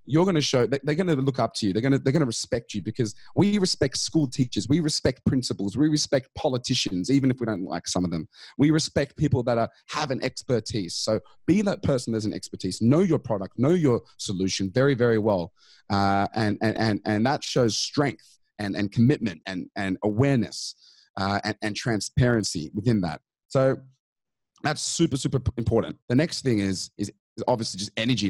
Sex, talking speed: male, 200 wpm